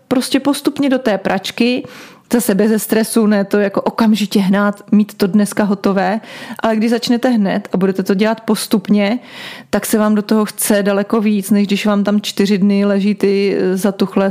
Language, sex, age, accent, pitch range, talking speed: Czech, female, 30-49, native, 195-225 Hz, 185 wpm